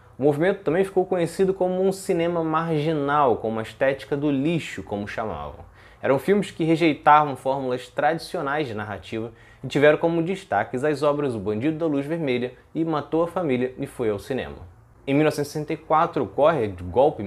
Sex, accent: male, Brazilian